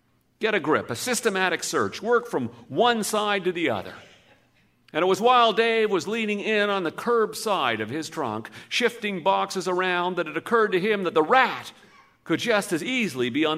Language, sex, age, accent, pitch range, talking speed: English, male, 50-69, American, 175-245 Hz, 200 wpm